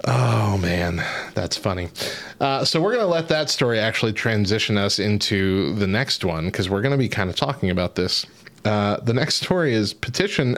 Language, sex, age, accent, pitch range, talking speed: English, male, 30-49, American, 105-135 Hz, 200 wpm